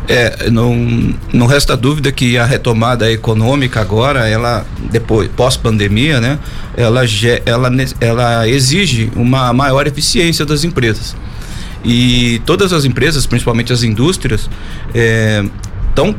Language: Portuguese